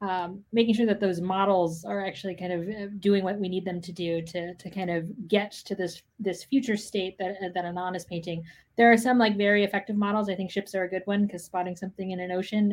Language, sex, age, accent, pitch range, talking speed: English, female, 20-39, American, 180-205 Hz, 245 wpm